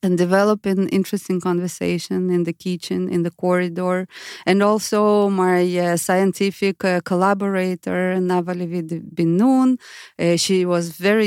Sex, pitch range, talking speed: female, 180-225 Hz, 130 wpm